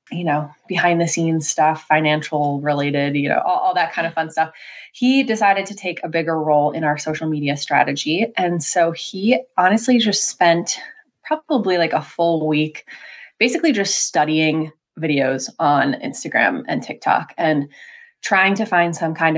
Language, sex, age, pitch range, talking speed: English, female, 20-39, 155-185 Hz, 165 wpm